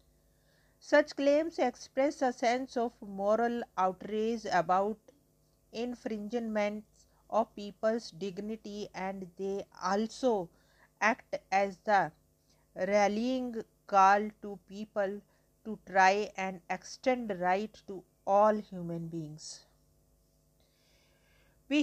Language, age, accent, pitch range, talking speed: English, 50-69, Indian, 185-230 Hz, 90 wpm